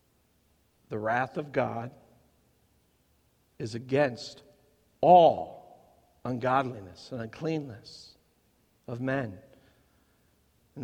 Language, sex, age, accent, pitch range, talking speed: English, male, 50-69, American, 140-195 Hz, 70 wpm